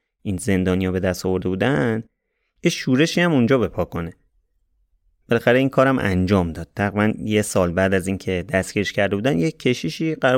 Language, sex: Persian, male